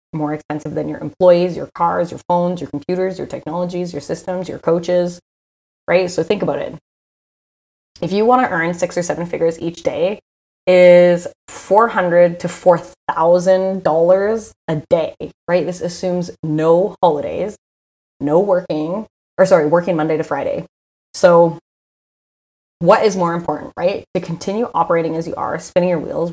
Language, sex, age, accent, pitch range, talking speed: English, female, 20-39, American, 150-180 Hz, 155 wpm